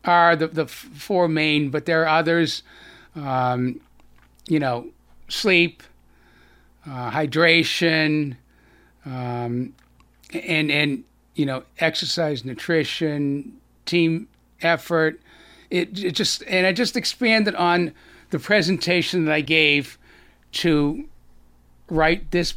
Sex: male